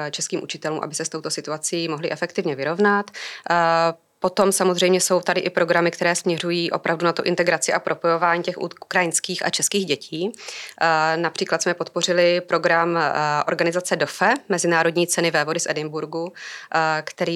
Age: 20-39